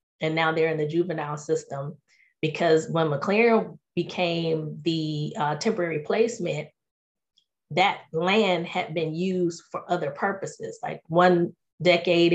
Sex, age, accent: female, 20-39, American